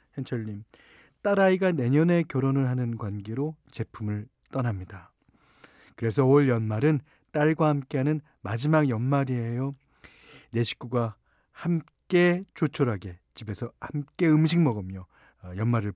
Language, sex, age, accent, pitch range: Korean, male, 40-59, native, 115-170 Hz